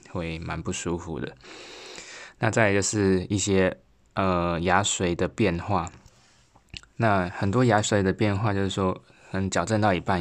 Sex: male